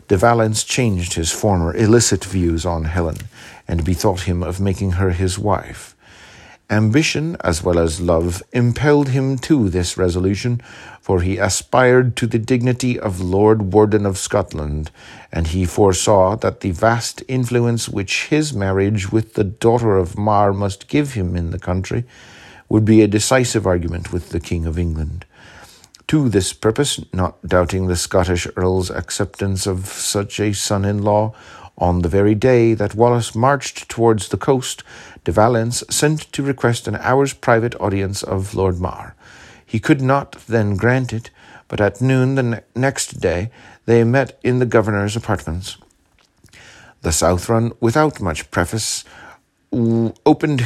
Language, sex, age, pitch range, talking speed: English, male, 50-69, 90-120 Hz, 150 wpm